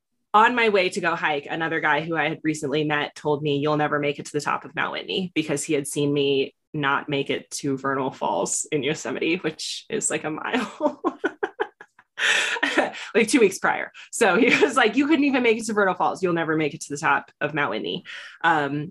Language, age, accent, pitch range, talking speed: English, 20-39, American, 145-175 Hz, 220 wpm